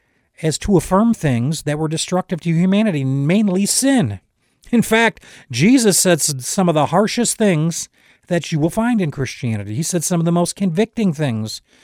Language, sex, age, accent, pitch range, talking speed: English, male, 50-69, American, 135-200 Hz, 170 wpm